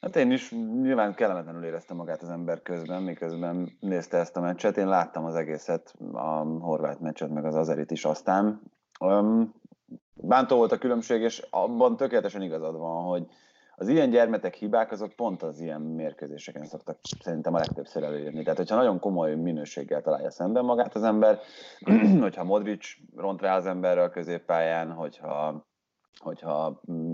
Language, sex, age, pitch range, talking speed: Hungarian, male, 30-49, 80-105 Hz, 155 wpm